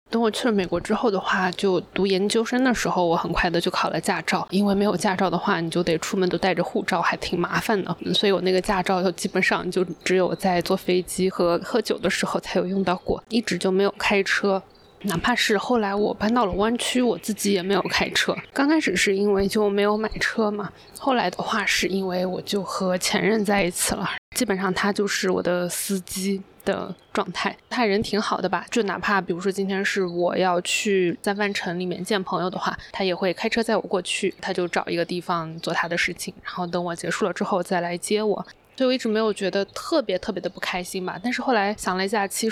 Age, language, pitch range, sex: 20-39, Chinese, 185-215 Hz, female